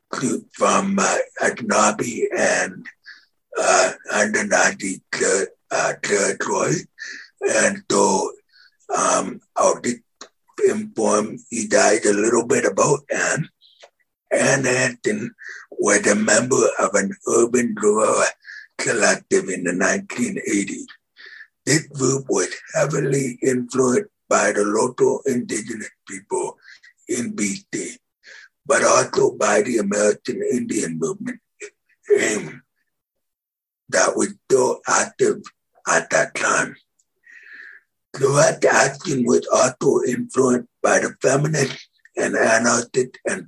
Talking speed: 105 wpm